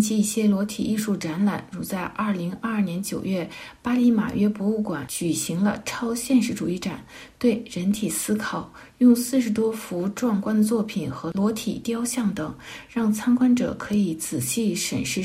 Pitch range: 195-240 Hz